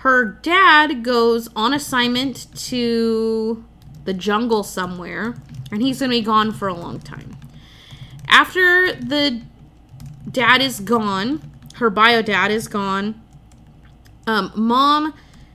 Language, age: English, 20-39